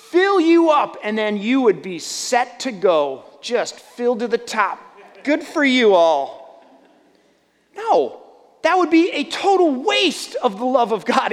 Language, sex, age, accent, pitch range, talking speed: English, male, 30-49, American, 215-320 Hz, 170 wpm